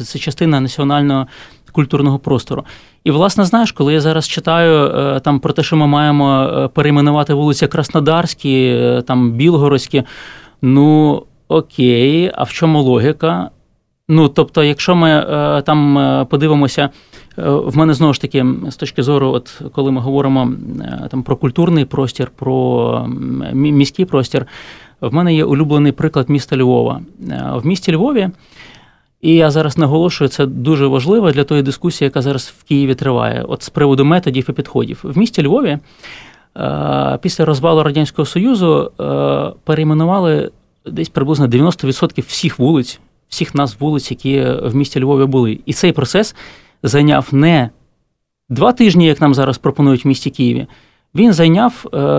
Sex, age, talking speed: male, 20-39, 140 wpm